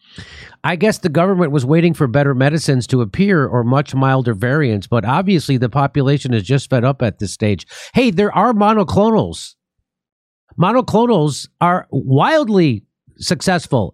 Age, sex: 50-69, male